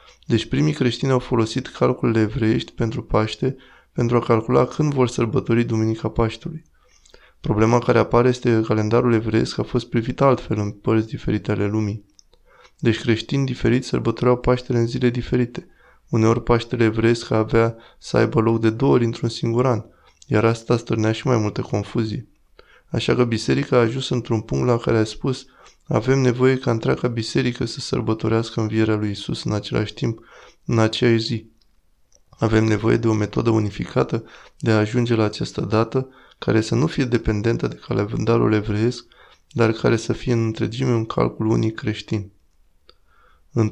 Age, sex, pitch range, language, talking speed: 20-39, male, 110-125 Hz, Romanian, 165 wpm